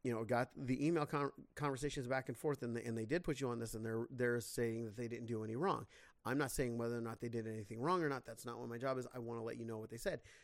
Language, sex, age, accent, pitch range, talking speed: English, male, 30-49, American, 120-160 Hz, 320 wpm